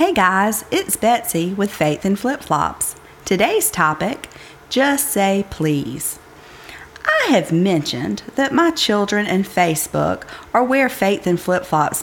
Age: 40-59